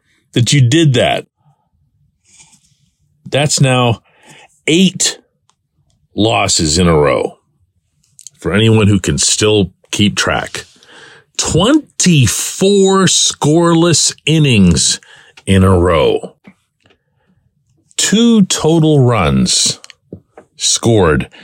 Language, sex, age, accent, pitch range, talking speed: English, male, 50-69, American, 90-145 Hz, 80 wpm